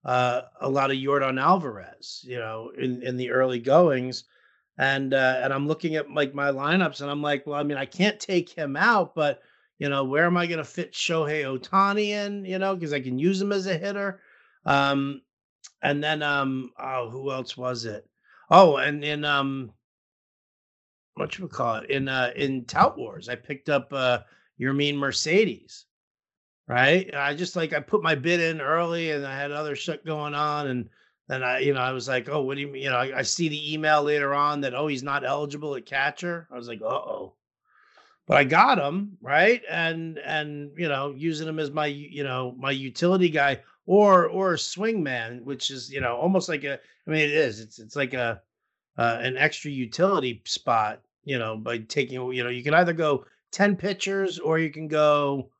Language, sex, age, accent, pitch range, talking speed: English, male, 50-69, American, 130-160 Hz, 210 wpm